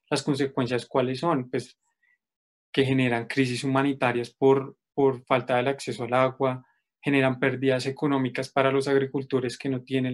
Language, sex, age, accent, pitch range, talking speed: Spanish, male, 20-39, Colombian, 125-140 Hz, 150 wpm